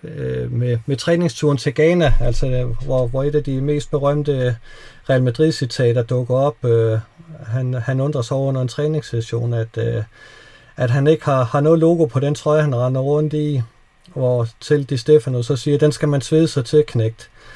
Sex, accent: male, native